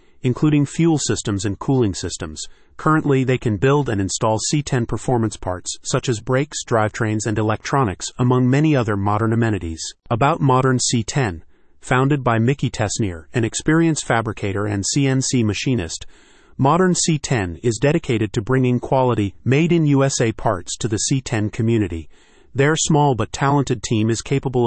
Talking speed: 145 wpm